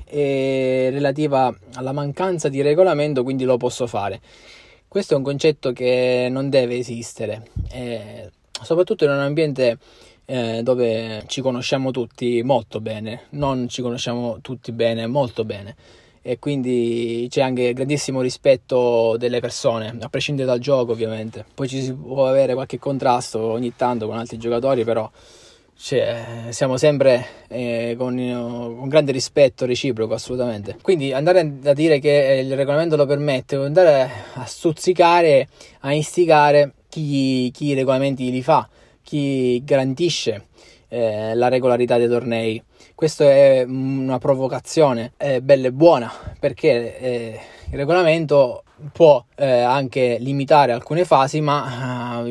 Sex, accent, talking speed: male, native, 140 wpm